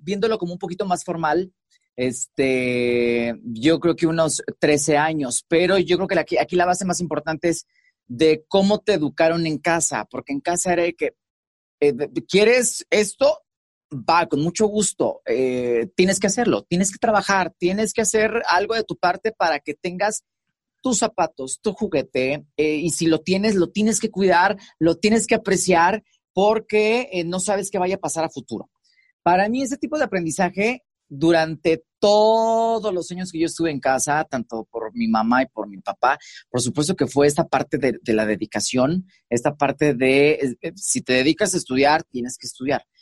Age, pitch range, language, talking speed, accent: 30-49, 145-210 Hz, Spanish, 180 wpm, Mexican